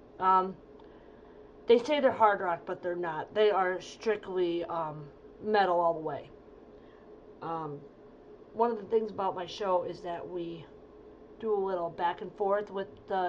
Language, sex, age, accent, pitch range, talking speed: English, female, 30-49, American, 185-230 Hz, 165 wpm